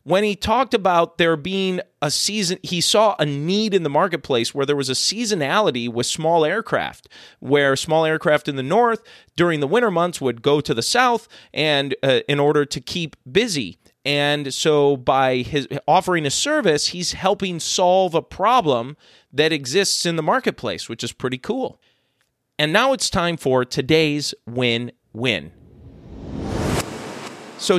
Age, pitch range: 30-49, 135-180 Hz